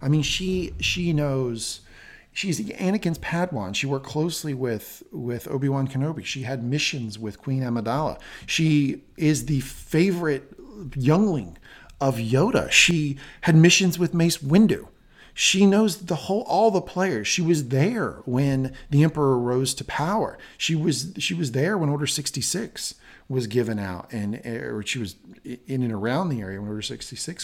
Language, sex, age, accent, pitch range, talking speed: English, male, 40-59, American, 110-155 Hz, 160 wpm